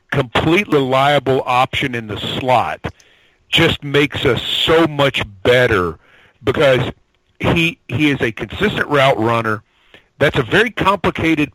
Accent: American